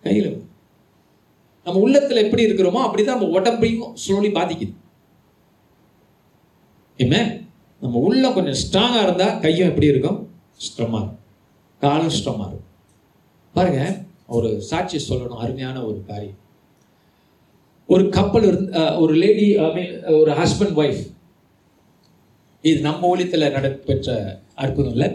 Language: Tamil